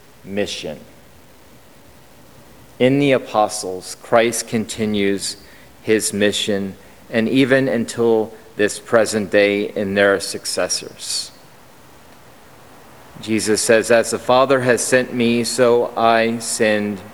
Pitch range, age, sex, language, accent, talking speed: 105-120 Hz, 40-59, male, English, American, 100 wpm